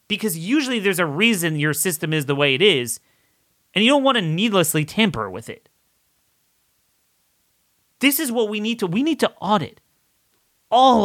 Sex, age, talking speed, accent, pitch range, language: male, 30-49, 175 wpm, American, 140-205 Hz, English